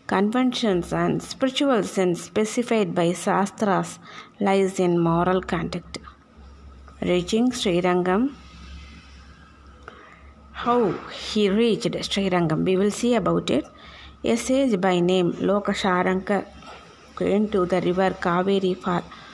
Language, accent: Tamil, native